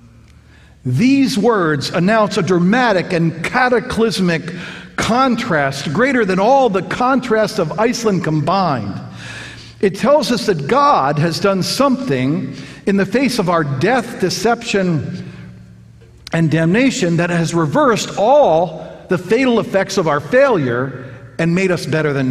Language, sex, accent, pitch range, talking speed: English, male, American, 135-195 Hz, 130 wpm